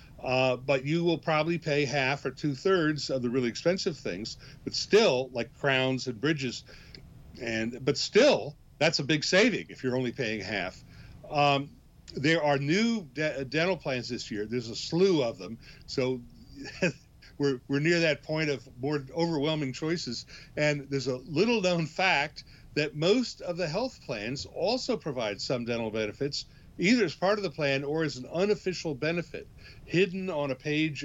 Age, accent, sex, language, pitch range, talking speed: 50-69, American, male, English, 130-165 Hz, 170 wpm